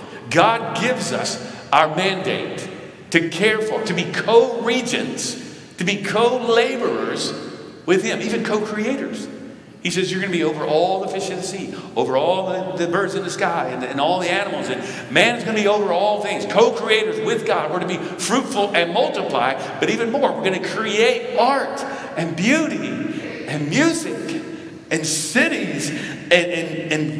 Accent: American